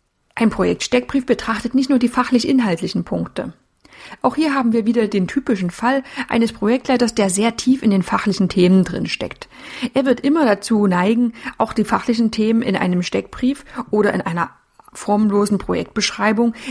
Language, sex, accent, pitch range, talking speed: German, female, German, 195-245 Hz, 160 wpm